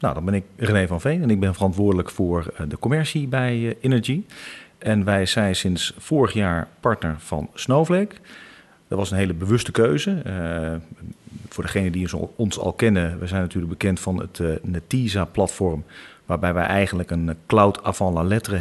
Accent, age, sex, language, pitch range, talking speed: Dutch, 40-59, male, Dutch, 85-110 Hz, 170 wpm